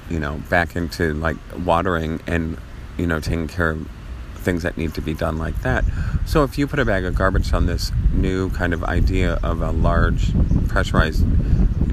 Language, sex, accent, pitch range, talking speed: English, male, American, 80-100 Hz, 195 wpm